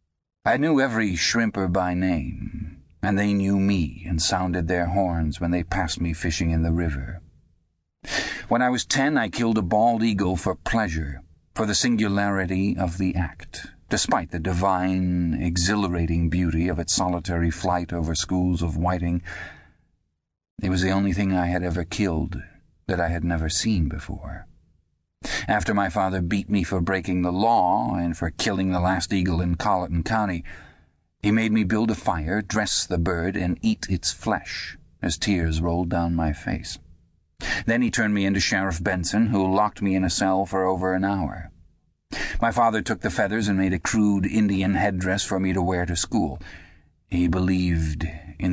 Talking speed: 175 wpm